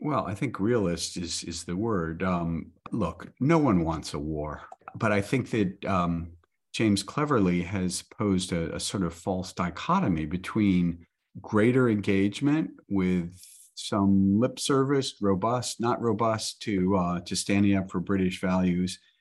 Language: English